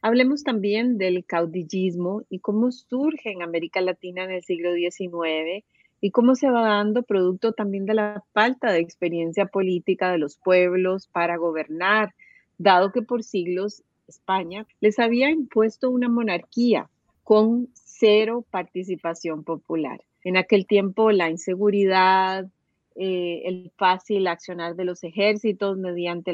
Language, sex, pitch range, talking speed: Spanish, female, 180-220 Hz, 135 wpm